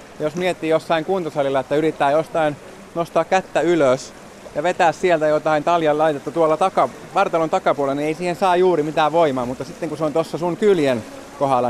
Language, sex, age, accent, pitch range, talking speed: Finnish, male, 30-49, native, 140-175 Hz, 180 wpm